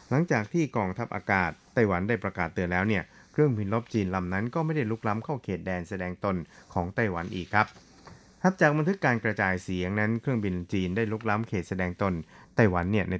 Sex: male